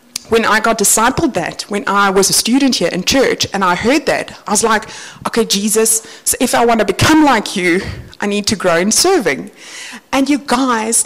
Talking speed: 210 wpm